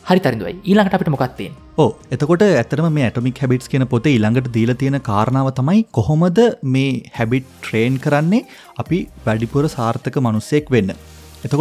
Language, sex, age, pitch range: English, male, 30-49, 115-150 Hz